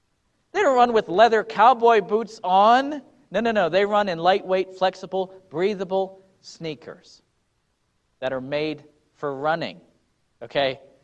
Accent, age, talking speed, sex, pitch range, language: American, 40-59, 130 wpm, male, 160-225 Hz, English